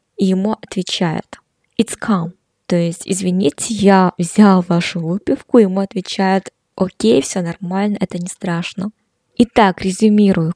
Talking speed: 125 wpm